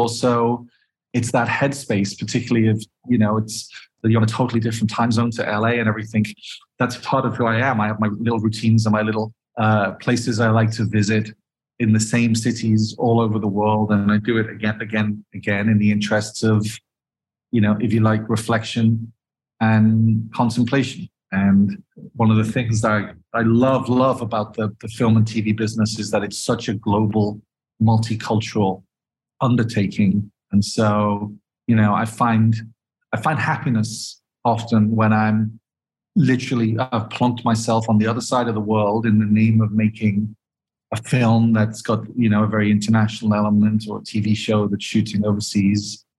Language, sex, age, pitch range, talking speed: English, male, 30-49, 105-115 Hz, 180 wpm